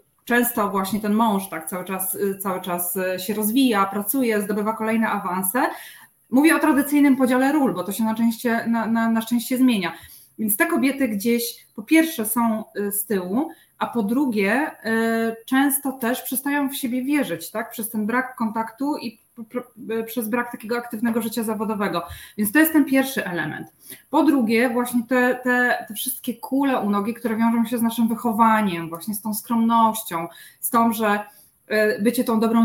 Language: Polish